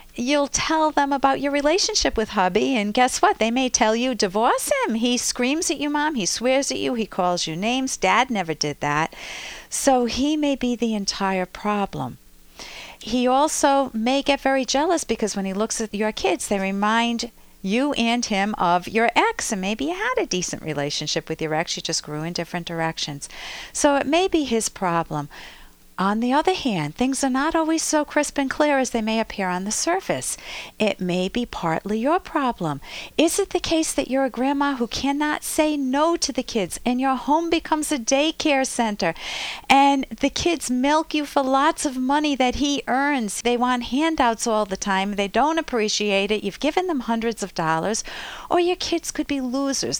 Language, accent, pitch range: English, American, 210-285 Hz